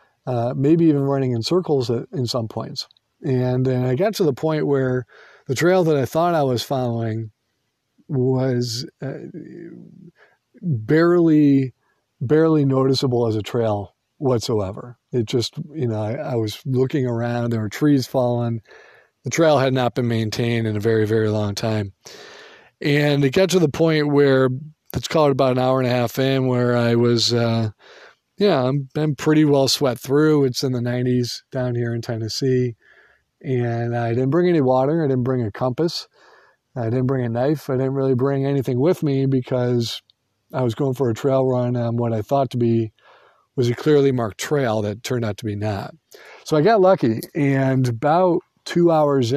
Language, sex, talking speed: English, male, 185 wpm